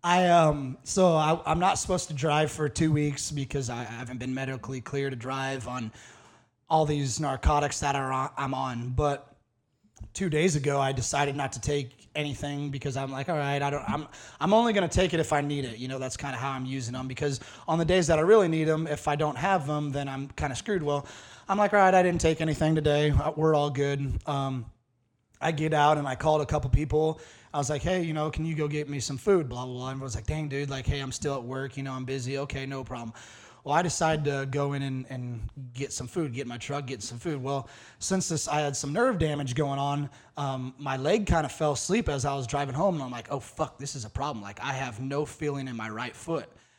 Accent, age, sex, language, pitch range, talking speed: American, 30-49, male, English, 130-155 Hz, 255 wpm